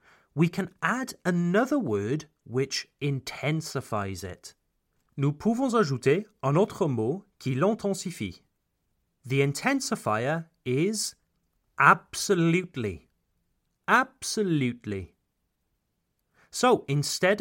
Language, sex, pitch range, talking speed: French, male, 125-195 Hz, 80 wpm